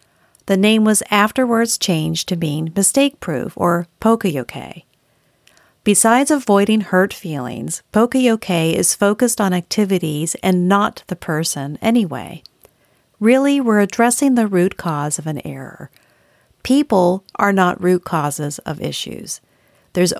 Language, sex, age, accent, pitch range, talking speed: English, female, 50-69, American, 165-215 Hz, 125 wpm